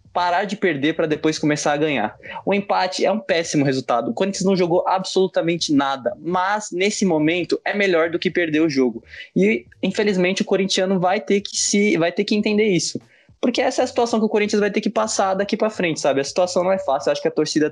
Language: Portuguese